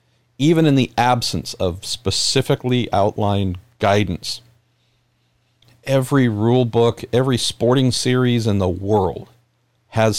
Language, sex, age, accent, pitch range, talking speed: English, male, 50-69, American, 100-125 Hz, 105 wpm